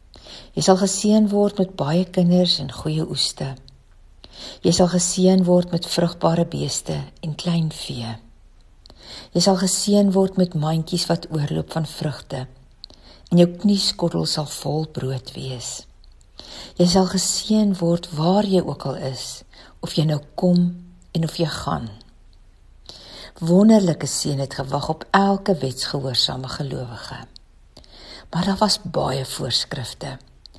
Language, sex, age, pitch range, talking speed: English, female, 50-69, 130-185 Hz, 130 wpm